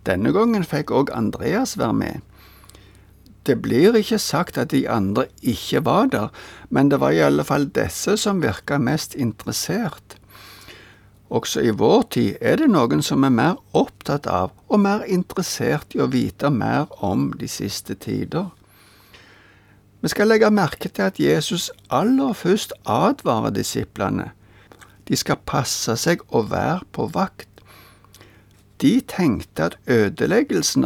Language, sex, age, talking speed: Danish, male, 60-79, 145 wpm